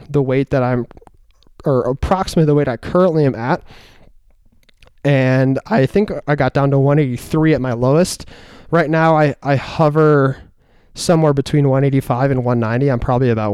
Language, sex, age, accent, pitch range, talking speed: English, male, 20-39, American, 125-150 Hz, 160 wpm